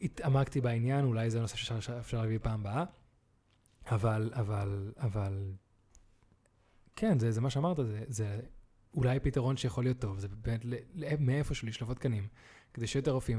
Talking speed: 165 wpm